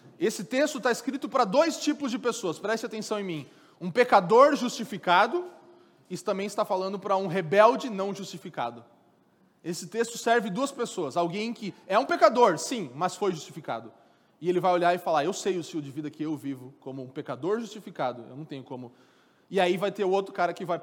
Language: Portuguese